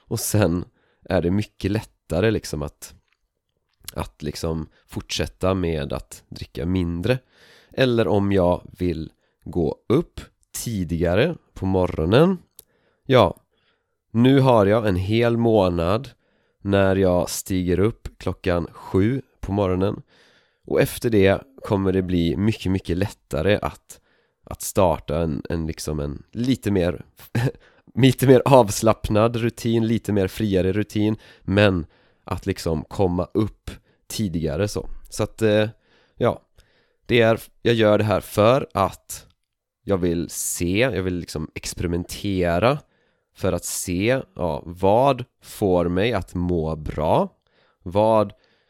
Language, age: Swedish, 30-49